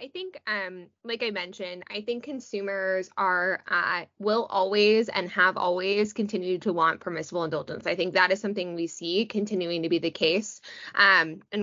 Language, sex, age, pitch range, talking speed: English, female, 10-29, 180-215 Hz, 180 wpm